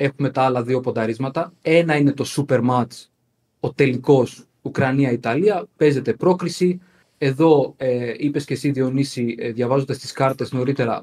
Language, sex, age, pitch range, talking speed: Greek, male, 20-39, 120-150 Hz, 140 wpm